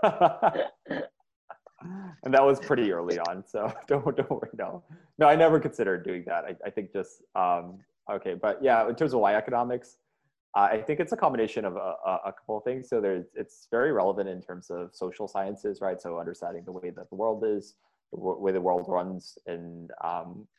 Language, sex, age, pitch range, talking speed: English, male, 20-39, 85-100 Hz, 200 wpm